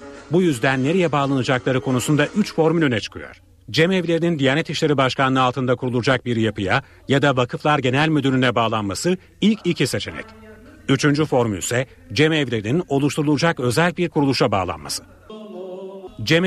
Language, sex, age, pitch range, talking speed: Turkish, male, 40-59, 120-155 Hz, 140 wpm